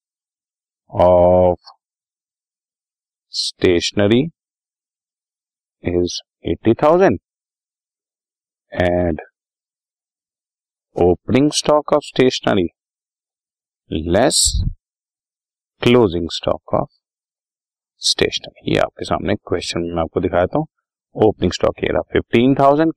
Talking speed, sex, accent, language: 70 wpm, male, native, Hindi